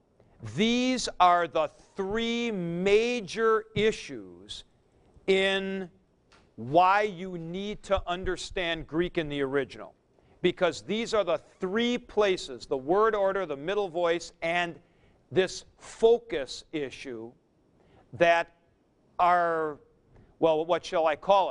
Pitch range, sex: 155-200 Hz, male